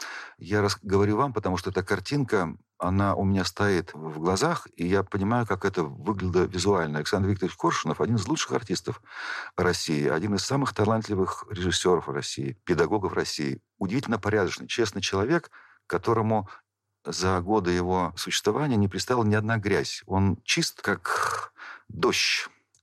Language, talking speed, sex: Russian, 145 wpm, male